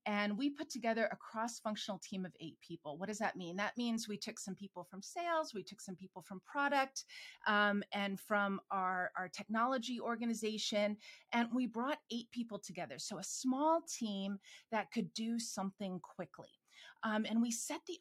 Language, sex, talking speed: English, female, 185 wpm